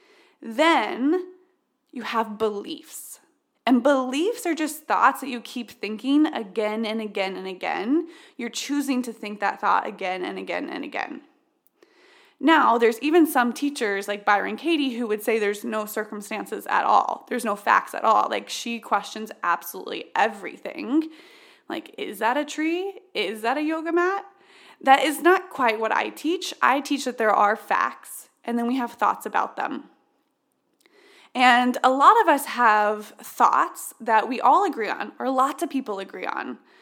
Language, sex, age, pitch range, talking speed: English, female, 20-39, 235-345 Hz, 170 wpm